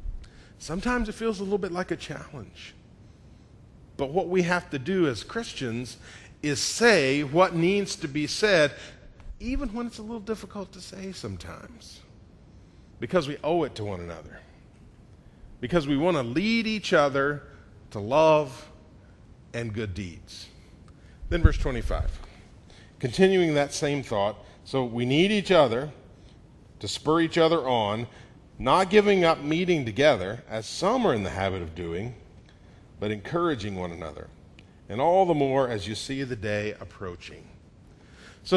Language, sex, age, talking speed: English, male, 40-59, 150 wpm